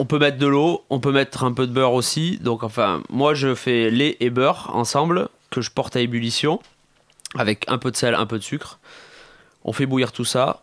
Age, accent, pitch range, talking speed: 20-39, French, 120-145 Hz, 230 wpm